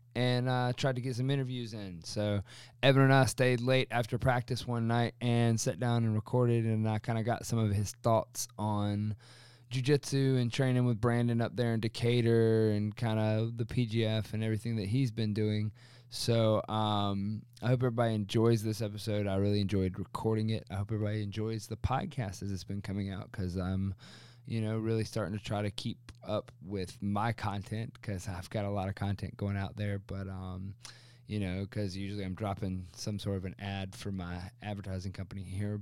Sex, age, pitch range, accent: male, 20-39, 100-120 Hz, American